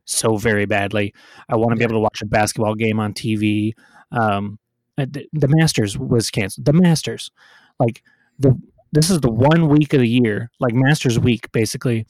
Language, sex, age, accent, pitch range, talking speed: English, male, 30-49, American, 110-130 Hz, 185 wpm